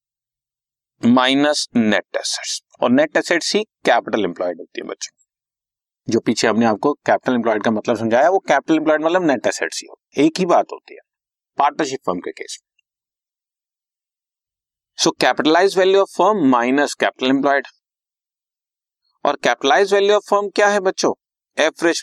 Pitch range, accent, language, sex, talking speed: 115-175 Hz, native, Hindi, male, 75 wpm